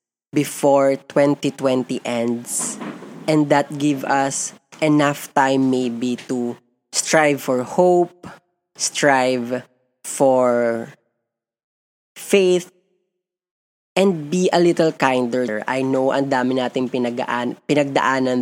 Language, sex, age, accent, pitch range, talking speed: Filipino, female, 20-39, native, 125-150 Hz, 95 wpm